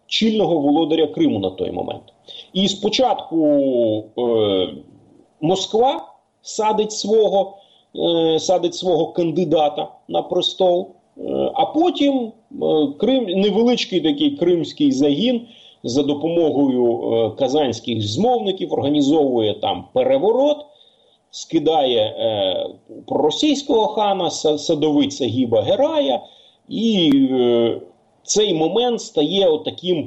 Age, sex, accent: 30-49, male, native